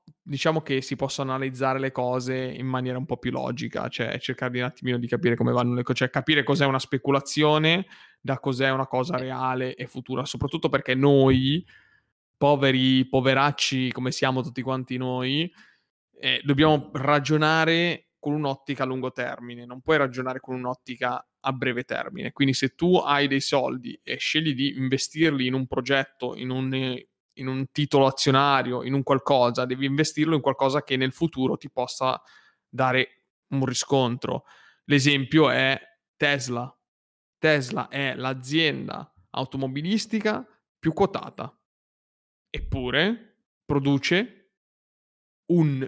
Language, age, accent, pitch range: Italian, 20-39, native, 130-150 Hz